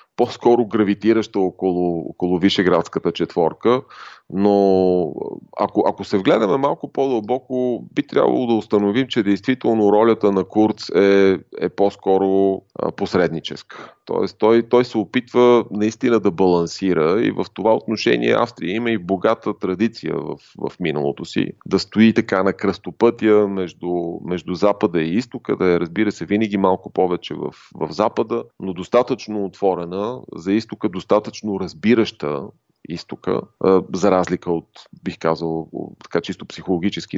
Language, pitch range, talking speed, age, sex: Bulgarian, 90-110 Hz, 135 wpm, 30-49, male